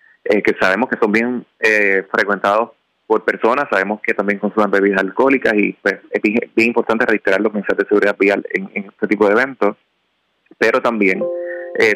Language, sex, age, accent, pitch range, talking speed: Spanish, male, 30-49, Venezuelan, 105-125 Hz, 180 wpm